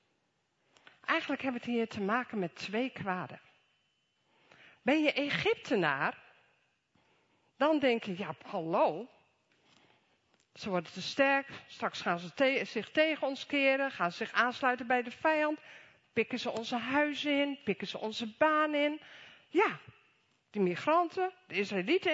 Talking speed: 140 wpm